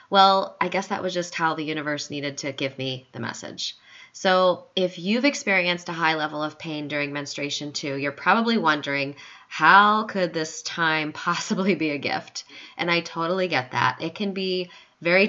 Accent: American